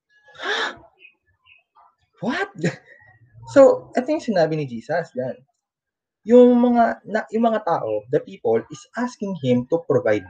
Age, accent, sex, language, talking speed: 20-39, native, male, Filipino, 120 wpm